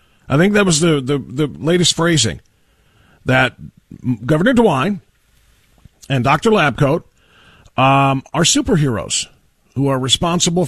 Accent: American